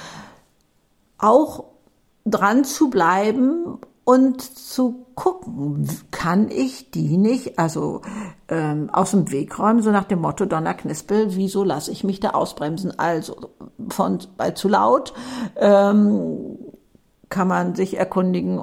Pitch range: 175-235 Hz